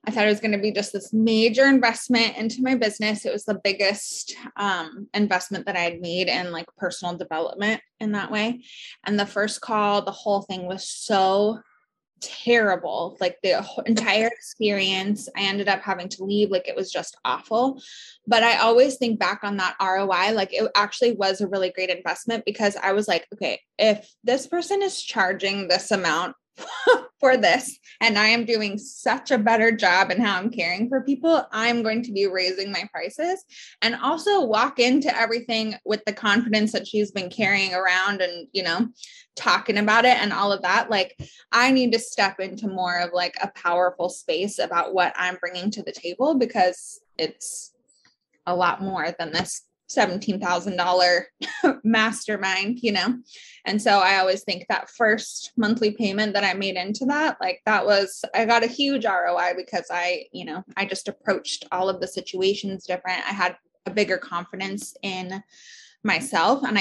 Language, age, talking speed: English, 20-39, 180 wpm